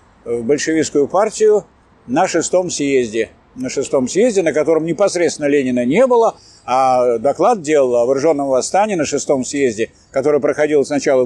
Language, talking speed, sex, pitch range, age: Russian, 145 wpm, male, 135-185 Hz, 50-69